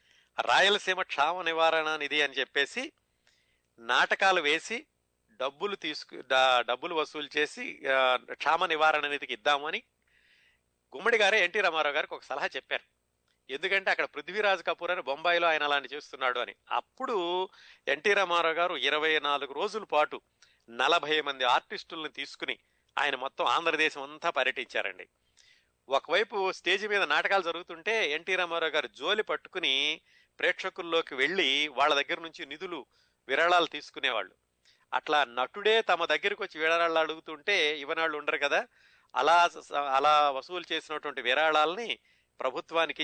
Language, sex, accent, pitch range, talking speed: Telugu, male, native, 135-170 Hz, 115 wpm